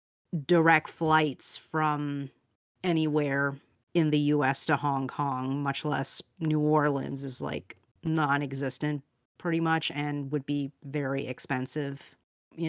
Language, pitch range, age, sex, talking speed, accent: English, 135-155 Hz, 30-49, female, 120 wpm, American